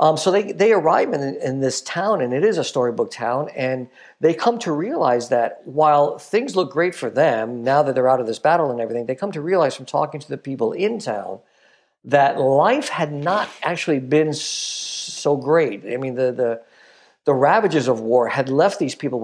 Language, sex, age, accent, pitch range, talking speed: English, male, 50-69, American, 125-155 Hz, 210 wpm